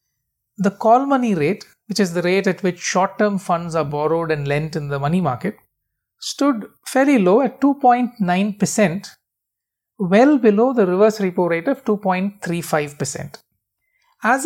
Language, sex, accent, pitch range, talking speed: English, male, Indian, 175-235 Hz, 140 wpm